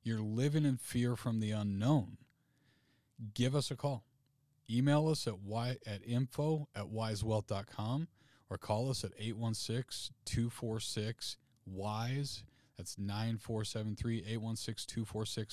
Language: English